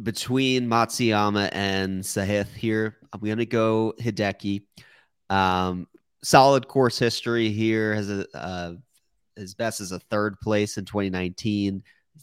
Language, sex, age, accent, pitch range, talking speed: English, male, 30-49, American, 95-110 Hz, 130 wpm